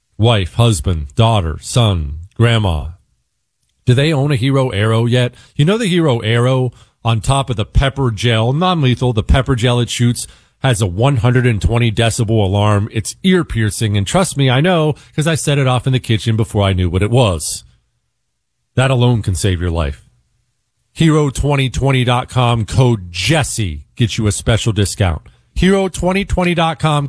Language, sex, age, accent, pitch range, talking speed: English, male, 40-59, American, 120-155 Hz, 155 wpm